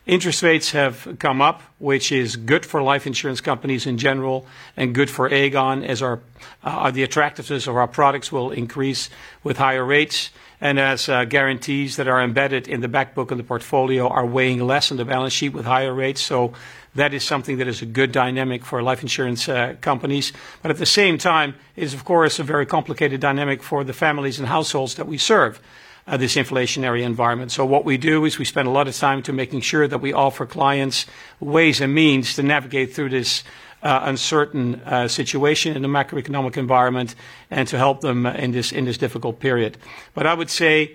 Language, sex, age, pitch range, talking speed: English, male, 60-79, 125-145 Hz, 205 wpm